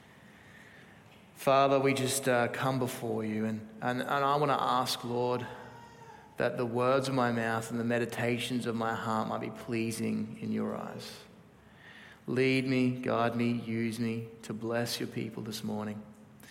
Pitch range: 115-145 Hz